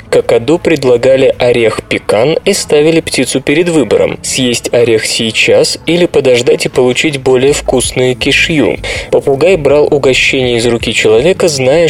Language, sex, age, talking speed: Russian, male, 20-39, 135 wpm